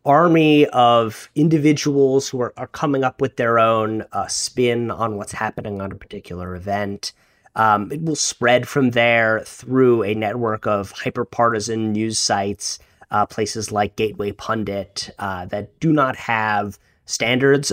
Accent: American